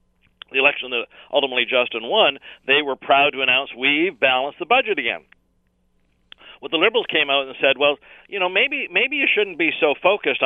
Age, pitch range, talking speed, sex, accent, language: 50-69, 120-160 Hz, 195 wpm, male, American, English